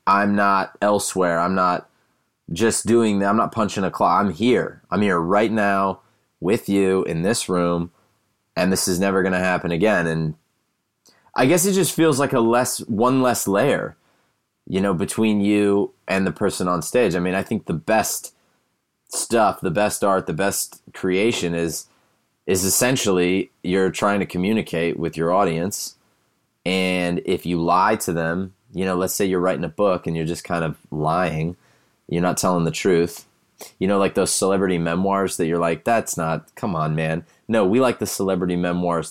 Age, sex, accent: 30-49, male, American